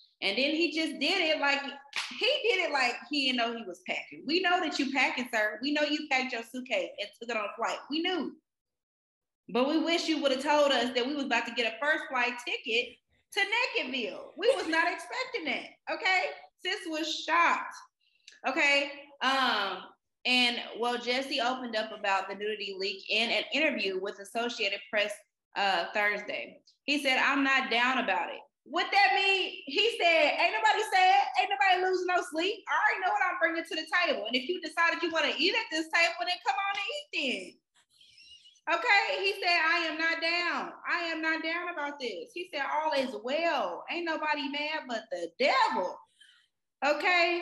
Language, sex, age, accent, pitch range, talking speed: English, female, 20-39, American, 255-345 Hz, 195 wpm